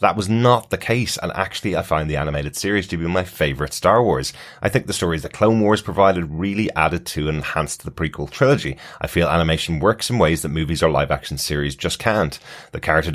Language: English